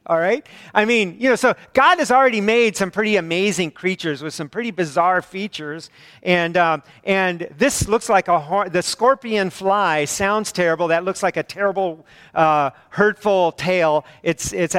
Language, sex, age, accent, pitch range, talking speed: English, male, 50-69, American, 155-205 Hz, 175 wpm